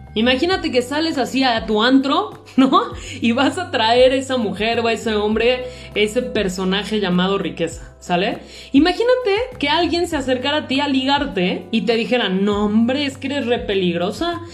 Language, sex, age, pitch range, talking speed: Spanish, female, 30-49, 215-310 Hz, 180 wpm